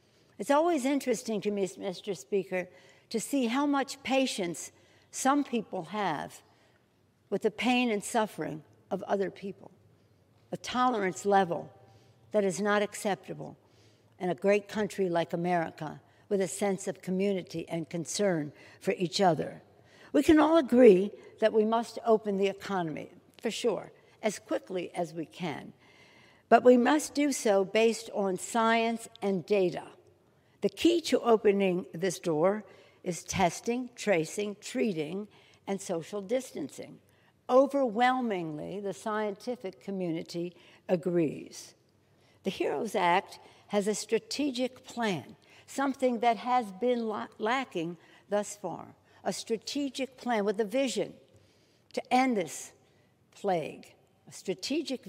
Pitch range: 180-235 Hz